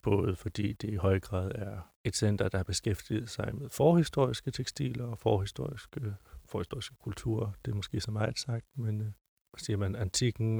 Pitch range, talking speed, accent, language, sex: 100-120 Hz, 170 wpm, native, Danish, male